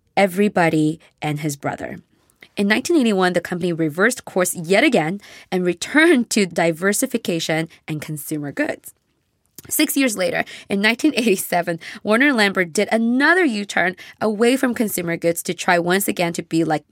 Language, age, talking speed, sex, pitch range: English, 20-39, 140 wpm, female, 170-220 Hz